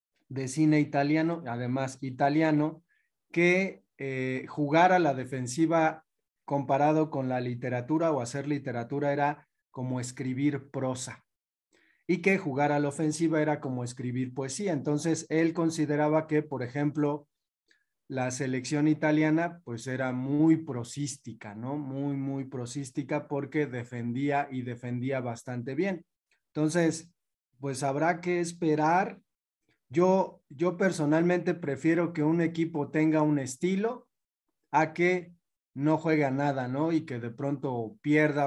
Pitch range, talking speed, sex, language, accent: 130-160 Hz, 125 wpm, male, Spanish, Mexican